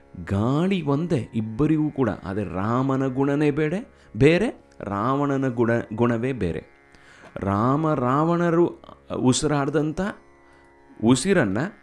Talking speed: 85 wpm